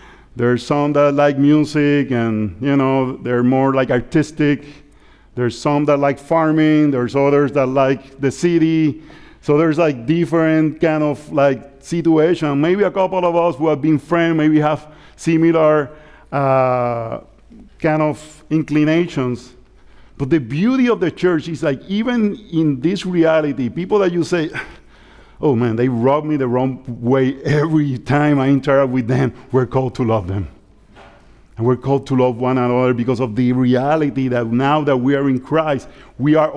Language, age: English, 50-69